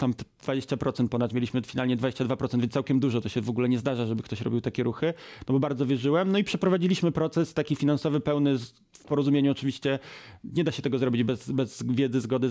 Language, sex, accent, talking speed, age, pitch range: Polish, male, native, 205 wpm, 30-49, 130-150 Hz